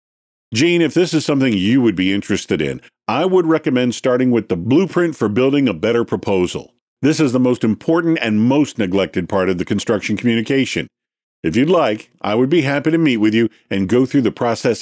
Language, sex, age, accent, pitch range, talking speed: English, male, 50-69, American, 100-155 Hz, 205 wpm